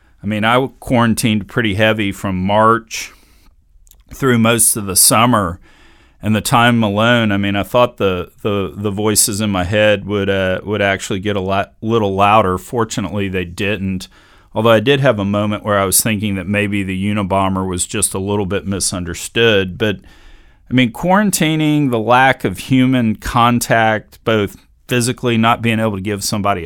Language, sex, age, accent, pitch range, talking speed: English, male, 40-59, American, 100-115 Hz, 175 wpm